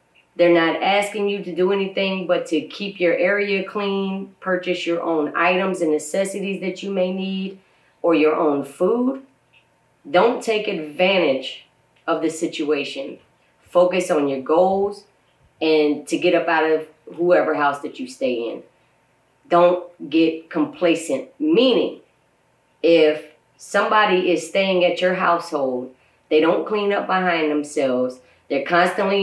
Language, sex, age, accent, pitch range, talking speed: English, female, 30-49, American, 155-195 Hz, 140 wpm